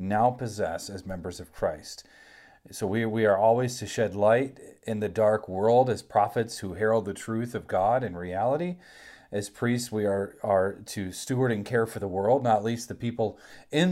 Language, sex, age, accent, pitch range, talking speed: English, male, 40-59, American, 100-120 Hz, 195 wpm